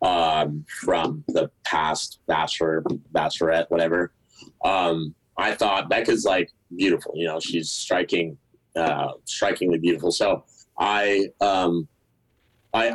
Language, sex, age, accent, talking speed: English, male, 30-49, American, 110 wpm